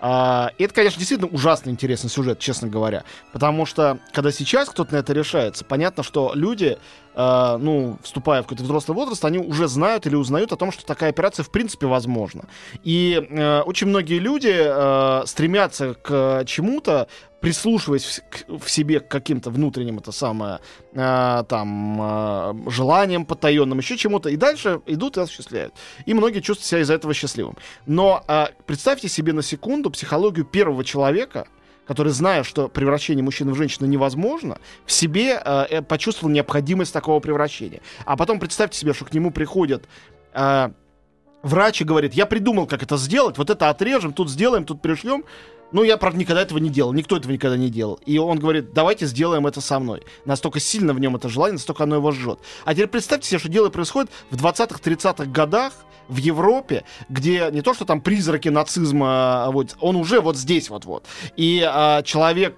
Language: Russian